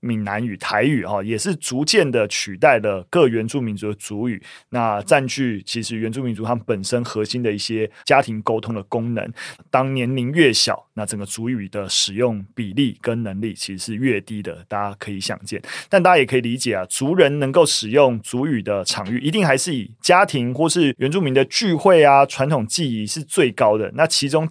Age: 30-49